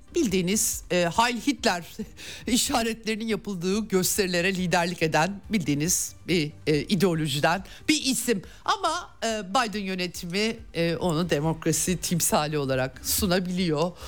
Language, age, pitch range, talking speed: Turkish, 60-79, 165-225 Hz, 105 wpm